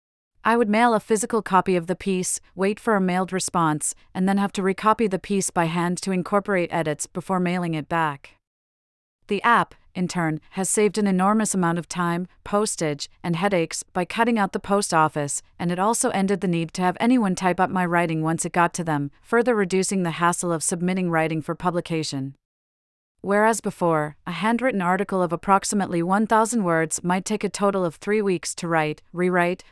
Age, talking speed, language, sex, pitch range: 40-59, 195 wpm, English, female, 165-200 Hz